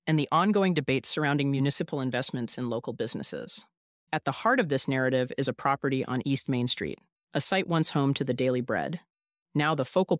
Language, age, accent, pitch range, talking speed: English, 40-59, American, 130-170 Hz, 200 wpm